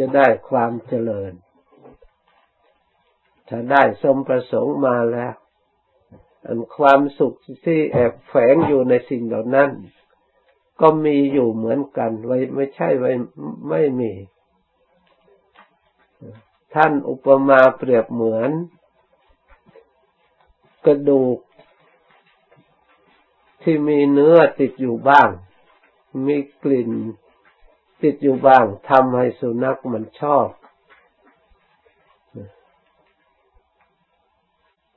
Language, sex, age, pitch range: Thai, male, 60-79, 115-140 Hz